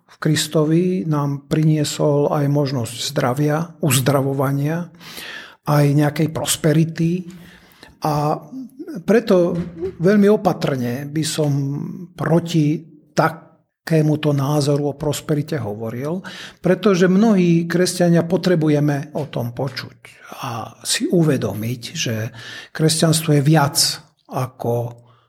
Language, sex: Slovak, male